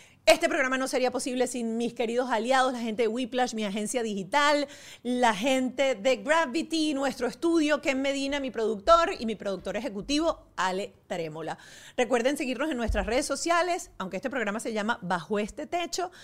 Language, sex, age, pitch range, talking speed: Spanish, female, 40-59, 195-265 Hz, 170 wpm